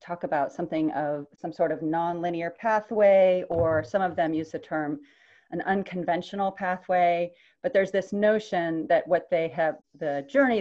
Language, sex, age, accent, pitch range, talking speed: English, female, 30-49, American, 155-185 Hz, 165 wpm